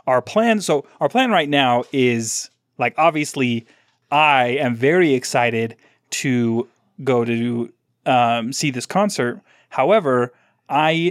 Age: 30-49